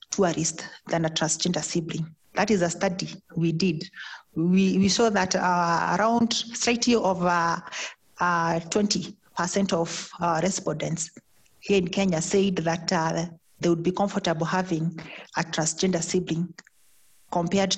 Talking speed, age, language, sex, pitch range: 140 wpm, 40-59, English, female, 165-195 Hz